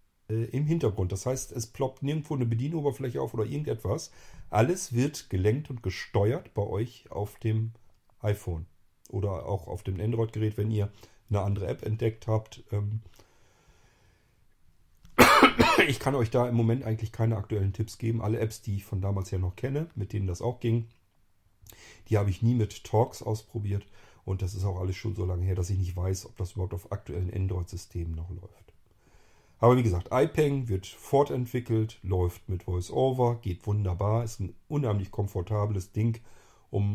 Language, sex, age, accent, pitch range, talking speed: German, male, 40-59, German, 95-115 Hz, 170 wpm